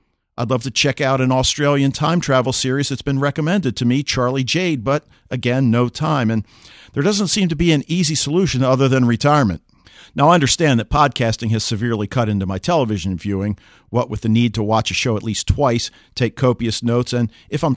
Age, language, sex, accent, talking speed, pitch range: 50-69, English, male, American, 210 wpm, 115-150 Hz